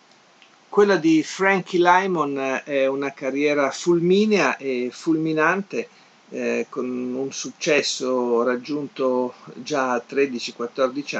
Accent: native